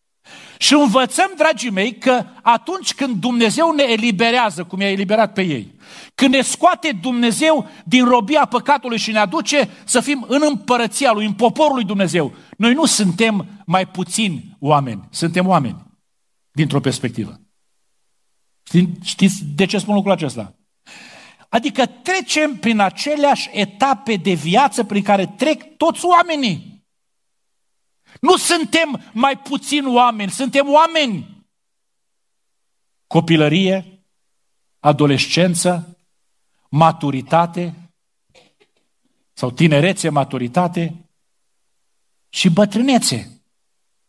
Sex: male